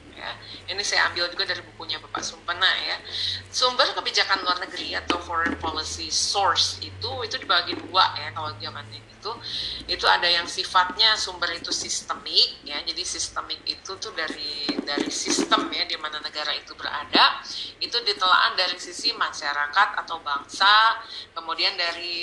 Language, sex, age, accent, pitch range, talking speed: Indonesian, female, 30-49, native, 160-200 Hz, 150 wpm